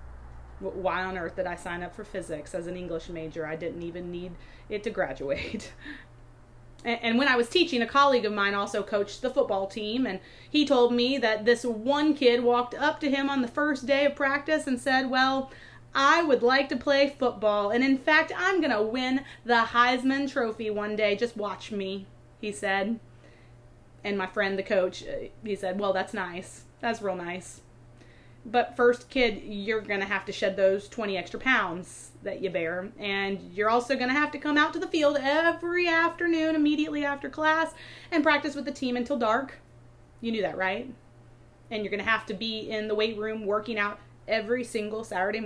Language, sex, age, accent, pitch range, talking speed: English, female, 30-49, American, 185-275 Hz, 200 wpm